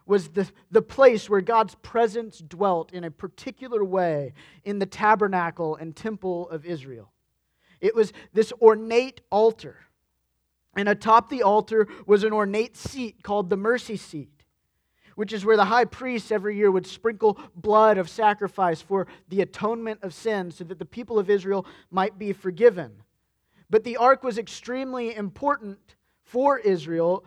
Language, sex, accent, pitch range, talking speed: English, male, American, 180-230 Hz, 155 wpm